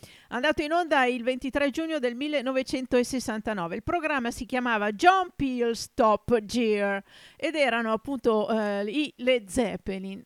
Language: Italian